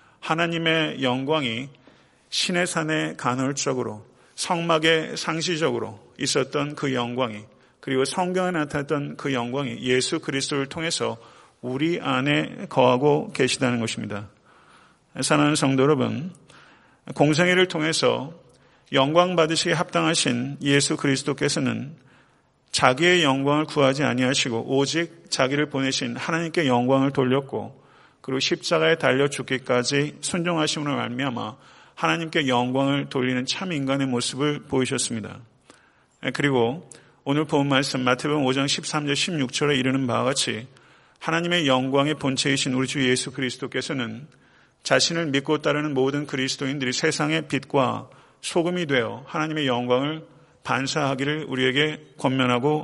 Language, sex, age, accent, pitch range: Korean, male, 40-59, native, 130-155 Hz